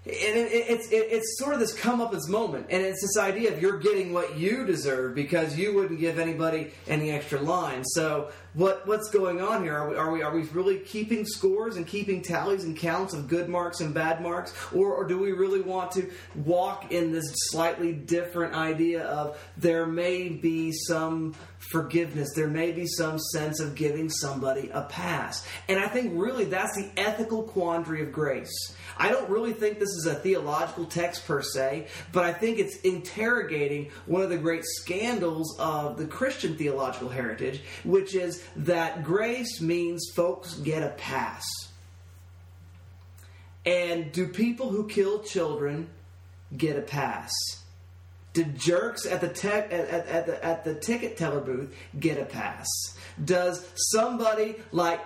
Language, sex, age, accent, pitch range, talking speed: English, male, 30-49, American, 150-195 Hz, 170 wpm